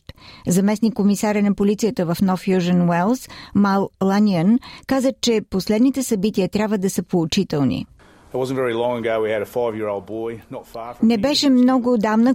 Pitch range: 190-225 Hz